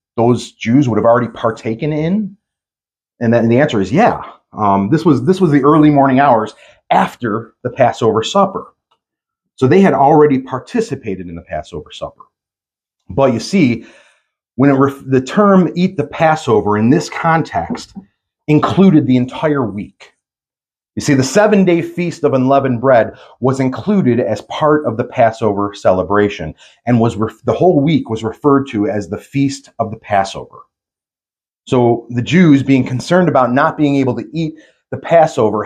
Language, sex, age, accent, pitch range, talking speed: English, male, 30-49, American, 110-150 Hz, 165 wpm